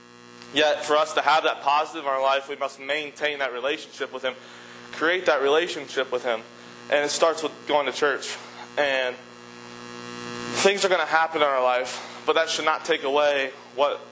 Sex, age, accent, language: male, 20-39, American, English